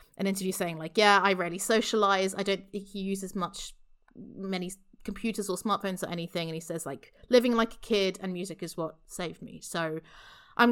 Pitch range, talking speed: 185-240 Hz, 200 wpm